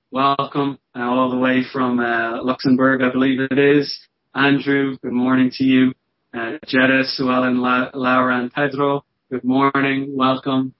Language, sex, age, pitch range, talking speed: English, male, 20-39, 120-135 Hz, 150 wpm